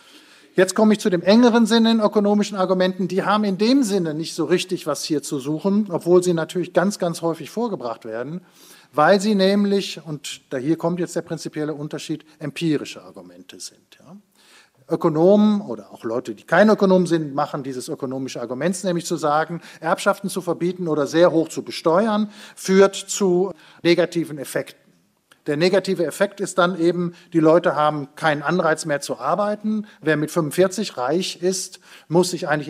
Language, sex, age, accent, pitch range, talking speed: German, male, 40-59, German, 140-190 Hz, 170 wpm